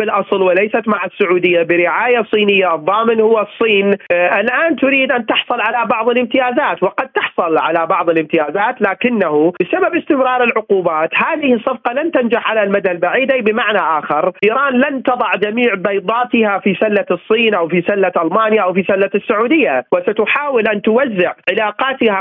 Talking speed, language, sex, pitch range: 150 wpm, Arabic, male, 190-245 Hz